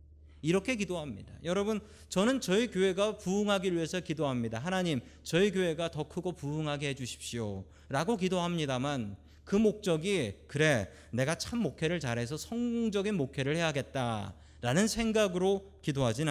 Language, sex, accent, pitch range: Korean, male, native, 115-190 Hz